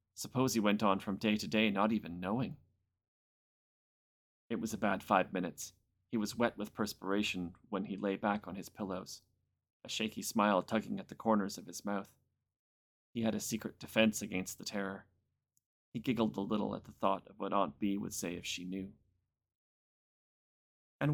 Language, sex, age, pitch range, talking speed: English, male, 30-49, 95-115 Hz, 180 wpm